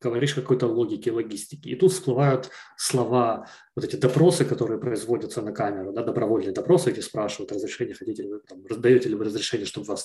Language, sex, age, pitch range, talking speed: Russian, male, 20-39, 125-160 Hz, 185 wpm